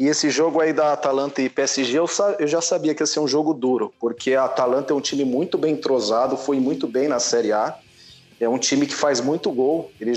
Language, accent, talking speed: Portuguese, Brazilian, 235 wpm